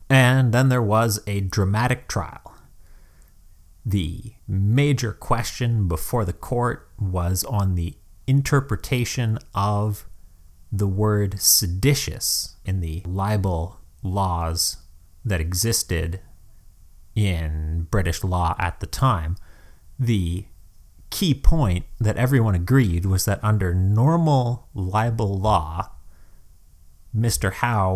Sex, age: male, 30-49